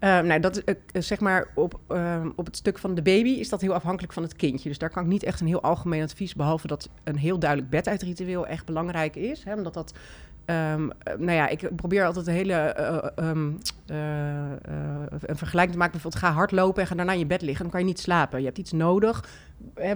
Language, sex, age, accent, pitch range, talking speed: Dutch, female, 30-49, Dutch, 150-185 Hz, 240 wpm